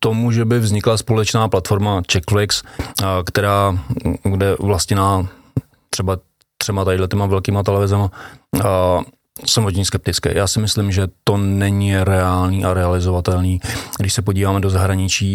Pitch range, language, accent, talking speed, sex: 95-105 Hz, Czech, native, 130 wpm, male